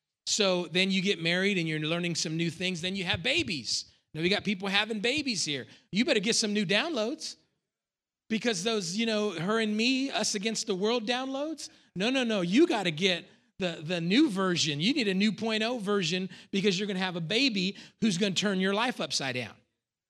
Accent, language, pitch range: American, English, 175-225 Hz